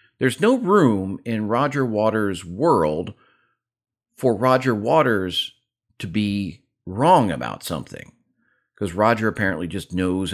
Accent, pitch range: American, 80-120 Hz